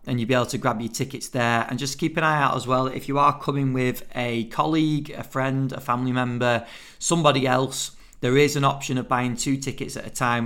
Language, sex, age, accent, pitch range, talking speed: English, male, 40-59, British, 120-145 Hz, 240 wpm